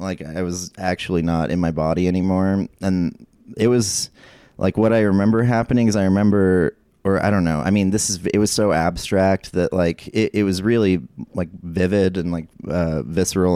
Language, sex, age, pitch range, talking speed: English, male, 30-49, 80-95 Hz, 195 wpm